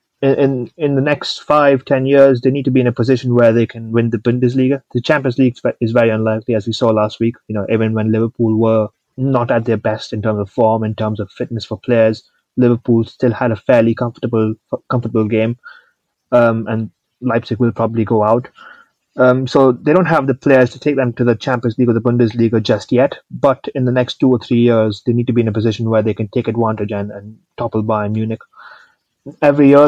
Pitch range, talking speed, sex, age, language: 115-130 Hz, 225 wpm, male, 20-39, English